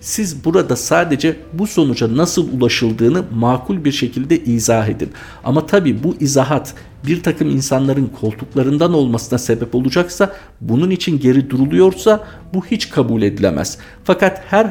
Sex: male